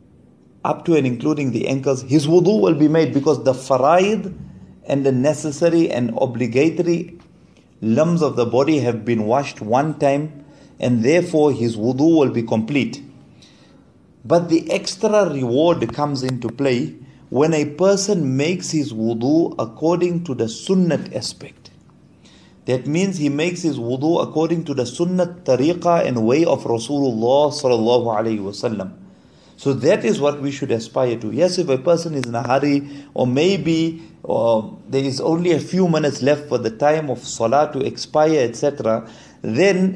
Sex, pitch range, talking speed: male, 125-160 Hz, 155 wpm